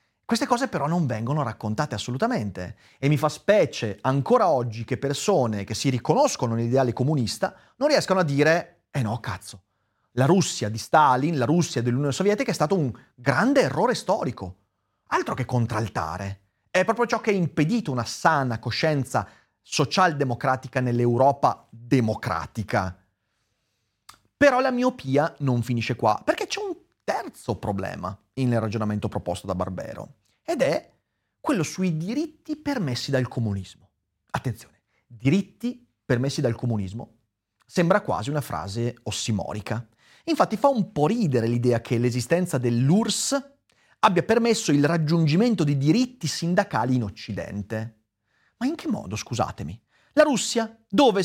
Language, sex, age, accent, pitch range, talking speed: Italian, male, 30-49, native, 110-185 Hz, 135 wpm